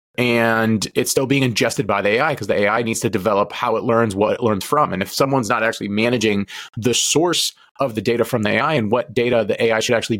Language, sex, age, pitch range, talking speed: English, male, 30-49, 110-135 Hz, 245 wpm